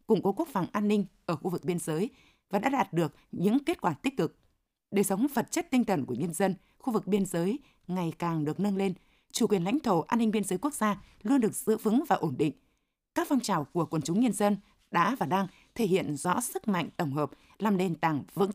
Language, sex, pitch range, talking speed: Vietnamese, female, 175-220 Hz, 250 wpm